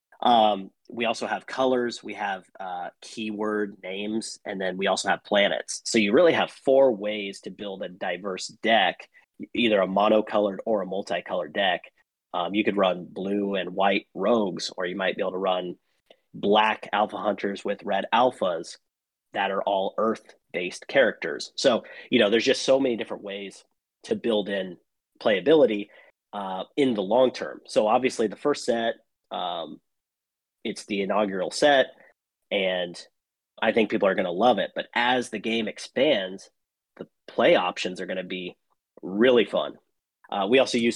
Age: 30-49